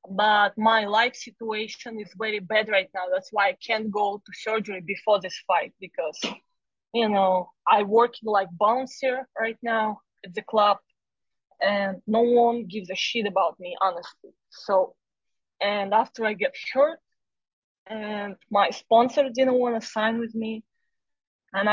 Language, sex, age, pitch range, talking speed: English, female, 20-39, 200-240 Hz, 155 wpm